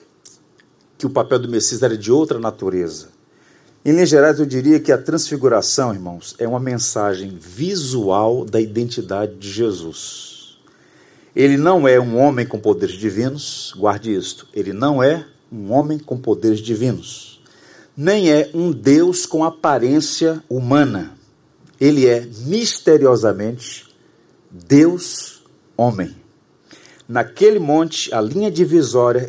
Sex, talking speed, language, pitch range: male, 120 wpm, Portuguese, 115-155 Hz